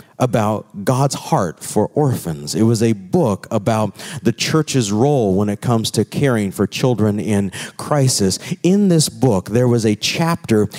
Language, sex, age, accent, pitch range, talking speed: English, male, 40-59, American, 110-145 Hz, 160 wpm